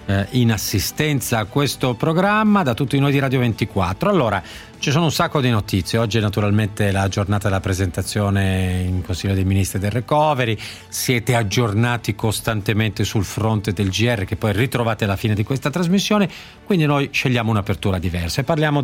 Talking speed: 165 wpm